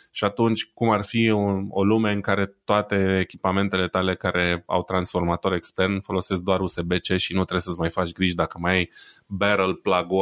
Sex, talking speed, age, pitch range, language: male, 190 wpm, 20-39, 90-105 Hz, Romanian